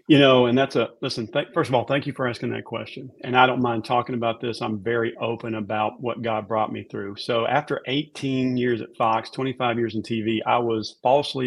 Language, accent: English, American